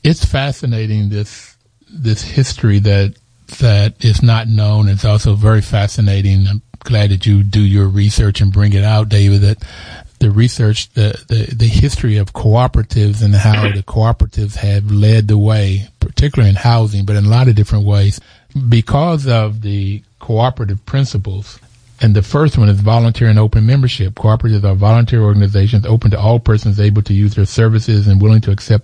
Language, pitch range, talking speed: English, 100-115 Hz, 175 wpm